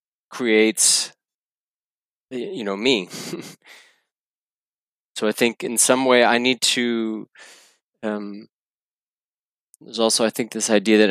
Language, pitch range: German, 105-120 Hz